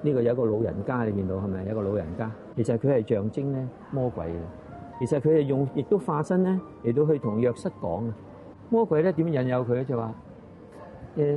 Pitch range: 105-150 Hz